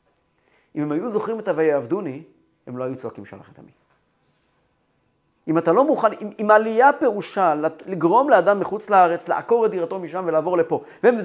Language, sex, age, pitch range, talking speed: Hebrew, male, 40-59, 145-225 Hz, 170 wpm